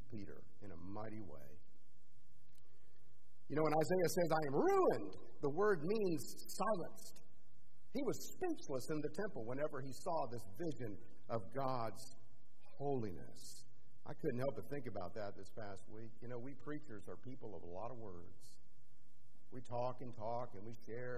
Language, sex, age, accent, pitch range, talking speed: English, male, 50-69, American, 115-180 Hz, 165 wpm